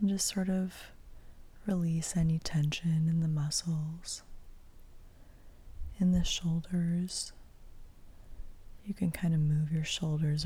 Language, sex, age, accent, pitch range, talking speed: English, female, 20-39, American, 115-170 Hz, 115 wpm